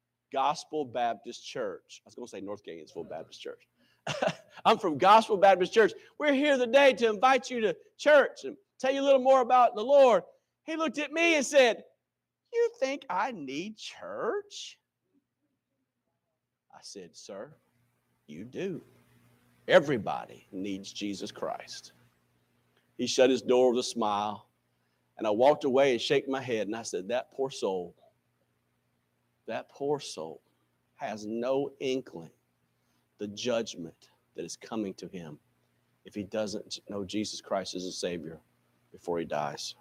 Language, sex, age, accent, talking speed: English, male, 50-69, American, 150 wpm